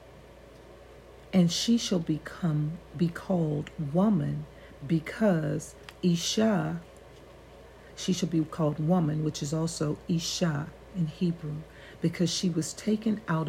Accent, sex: American, female